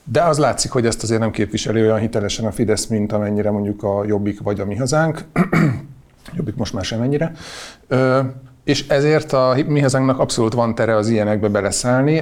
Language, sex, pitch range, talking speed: English, male, 110-125 Hz, 175 wpm